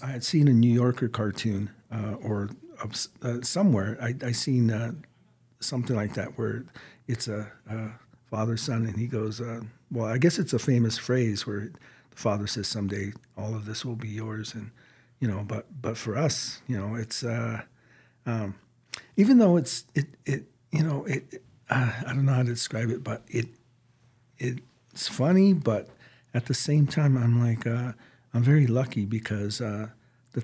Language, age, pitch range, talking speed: English, 50-69, 110-125 Hz, 180 wpm